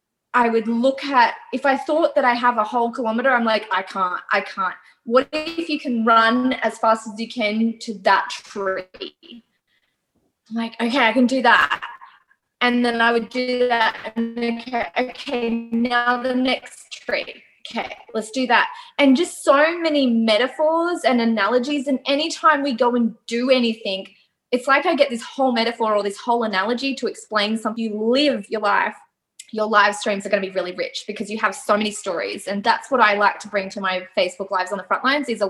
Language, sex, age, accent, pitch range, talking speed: English, female, 20-39, Australian, 215-275 Hz, 205 wpm